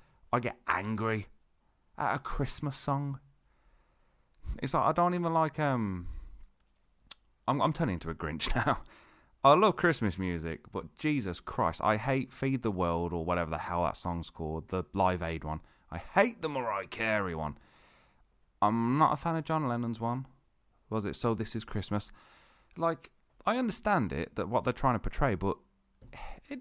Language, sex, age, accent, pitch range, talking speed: English, male, 30-49, British, 90-130 Hz, 170 wpm